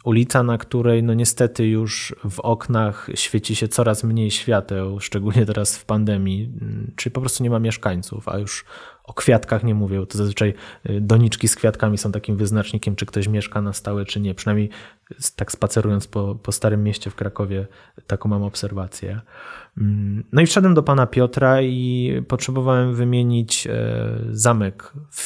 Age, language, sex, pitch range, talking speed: 20-39, Polish, male, 105-125 Hz, 155 wpm